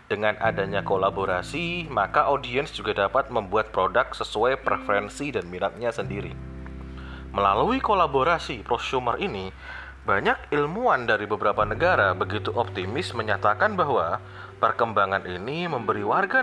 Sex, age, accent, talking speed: male, 30-49, native, 115 wpm